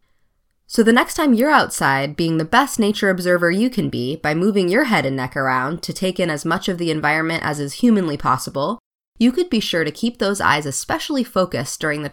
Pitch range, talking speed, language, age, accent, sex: 155-230 Hz, 225 wpm, English, 20-39, American, female